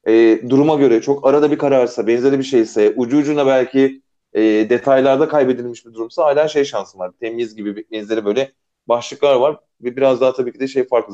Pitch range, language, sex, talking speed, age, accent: 125-165 Hz, Turkish, male, 205 wpm, 30-49, native